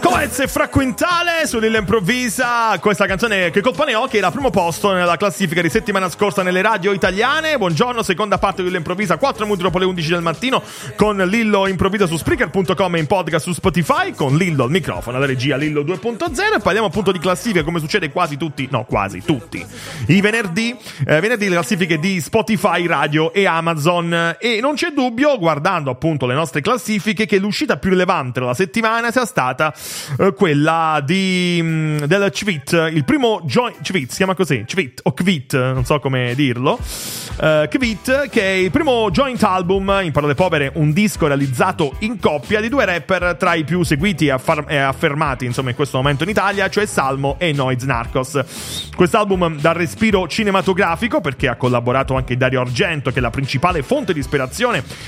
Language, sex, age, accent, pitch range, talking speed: English, male, 30-49, Italian, 150-210 Hz, 185 wpm